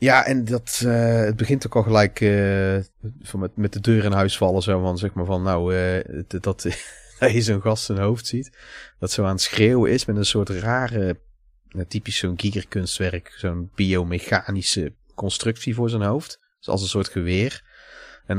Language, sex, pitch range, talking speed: Dutch, male, 100-125 Hz, 185 wpm